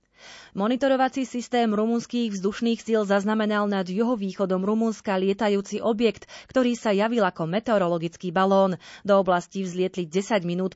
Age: 30-49